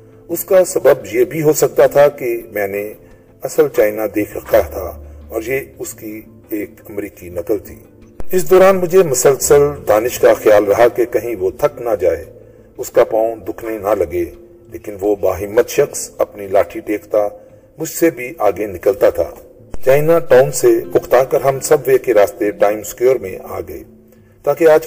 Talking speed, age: 180 wpm, 40-59